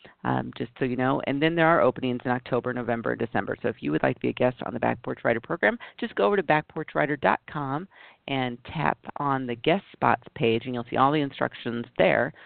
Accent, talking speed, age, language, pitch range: American, 230 wpm, 40-59, English, 125-150 Hz